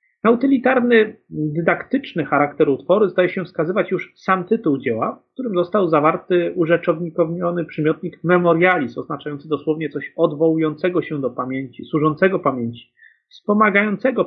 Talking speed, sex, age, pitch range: 120 wpm, male, 30-49, 145-205 Hz